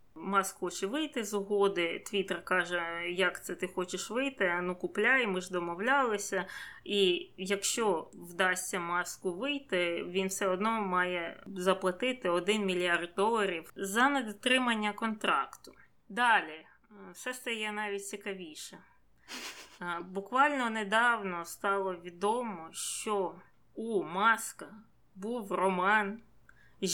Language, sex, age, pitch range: Ukrainian, female, 20-39, 180-215 Hz